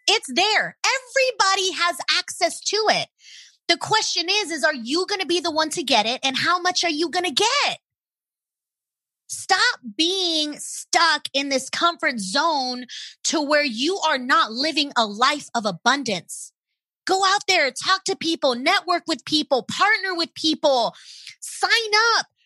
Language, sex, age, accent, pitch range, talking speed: English, female, 30-49, American, 280-370 Hz, 160 wpm